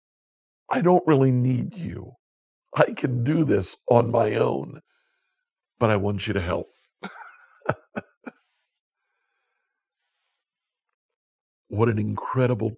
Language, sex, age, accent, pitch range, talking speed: English, male, 60-79, American, 110-145 Hz, 100 wpm